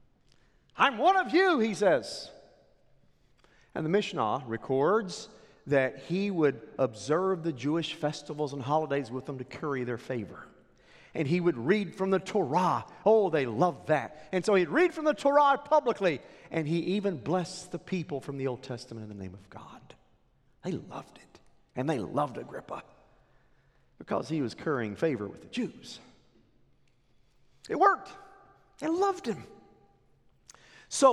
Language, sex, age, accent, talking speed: English, male, 50-69, American, 155 wpm